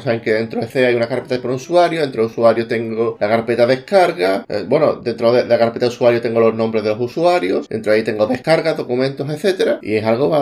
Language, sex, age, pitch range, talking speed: Spanish, male, 20-39, 110-135 Hz, 235 wpm